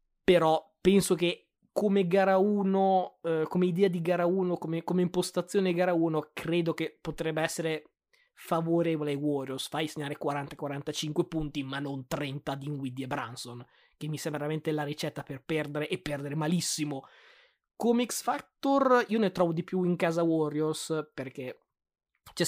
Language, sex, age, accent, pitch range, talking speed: Italian, male, 20-39, native, 150-180 Hz, 155 wpm